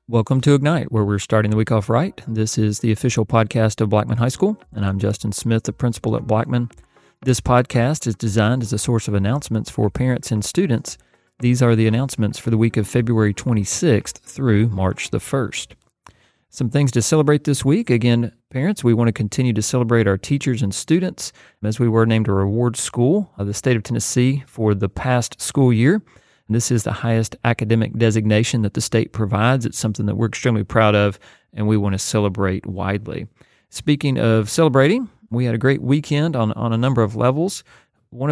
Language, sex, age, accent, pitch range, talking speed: English, male, 40-59, American, 110-130 Hz, 200 wpm